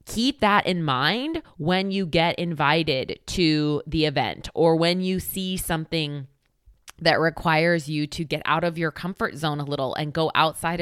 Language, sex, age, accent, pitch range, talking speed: English, female, 20-39, American, 150-175 Hz, 170 wpm